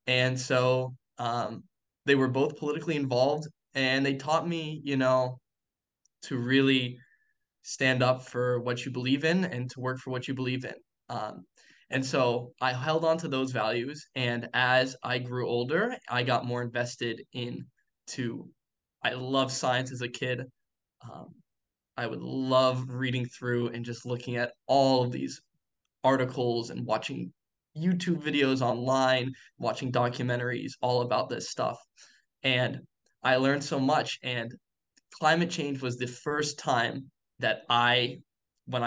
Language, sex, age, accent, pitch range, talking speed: English, male, 10-29, American, 120-140 Hz, 150 wpm